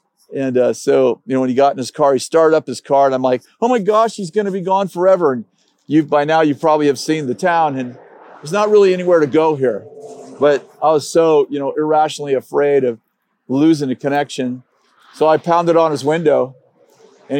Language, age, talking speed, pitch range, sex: English, 50-69, 225 wpm, 125-155 Hz, male